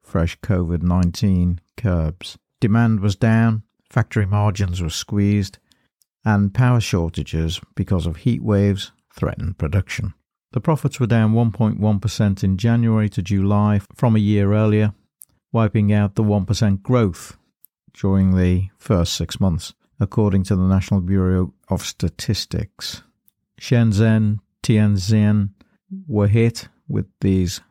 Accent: British